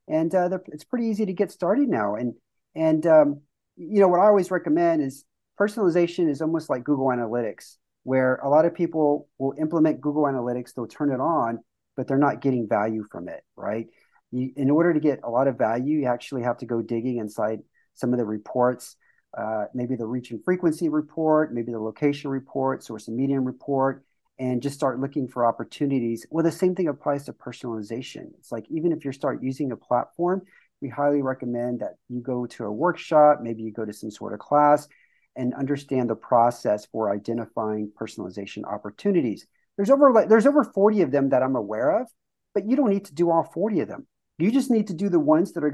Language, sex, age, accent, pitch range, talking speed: English, male, 40-59, American, 125-170 Hz, 205 wpm